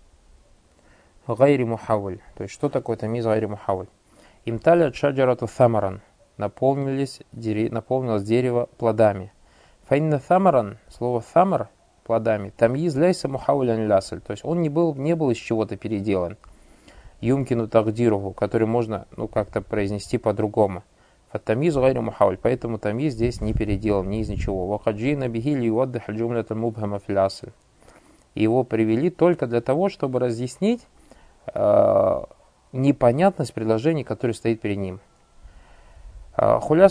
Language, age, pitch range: Russian, 20-39, 105-130 Hz